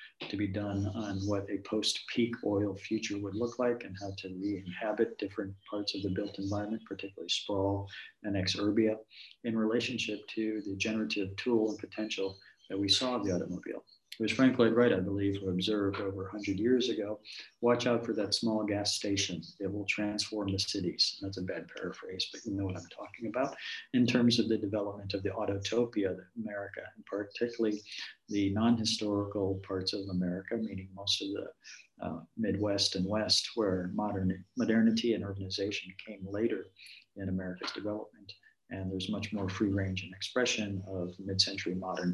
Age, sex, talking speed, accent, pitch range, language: 40-59, male, 175 wpm, American, 95-110 Hz, Polish